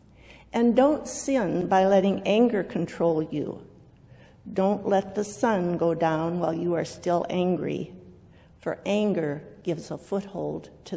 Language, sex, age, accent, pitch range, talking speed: English, female, 50-69, American, 170-220 Hz, 135 wpm